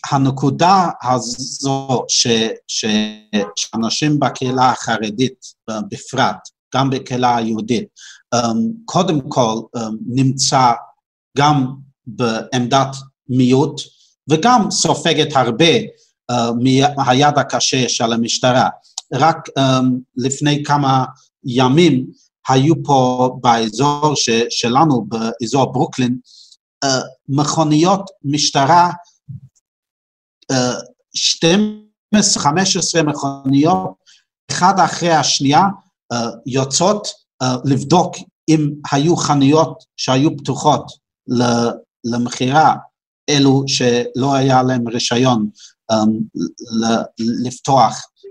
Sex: male